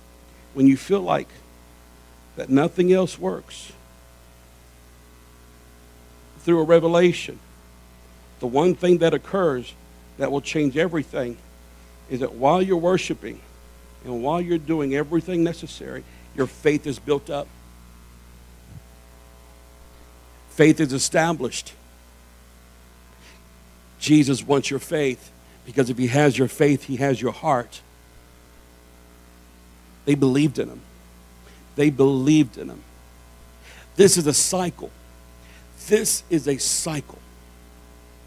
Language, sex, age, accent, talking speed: English, male, 60-79, American, 110 wpm